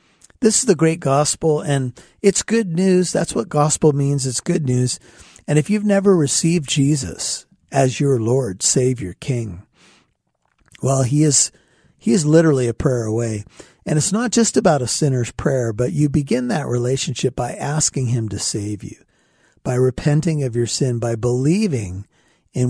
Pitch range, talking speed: 120-160 Hz, 165 wpm